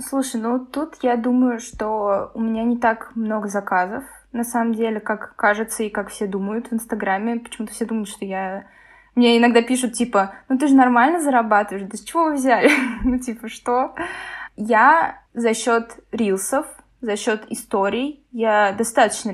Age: 20-39